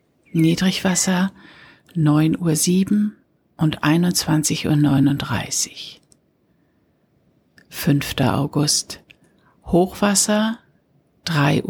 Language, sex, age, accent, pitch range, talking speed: German, female, 60-79, German, 150-185 Hz, 50 wpm